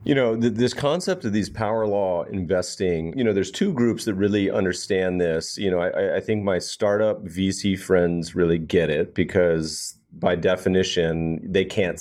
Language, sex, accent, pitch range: English, male, American, 85-105 Hz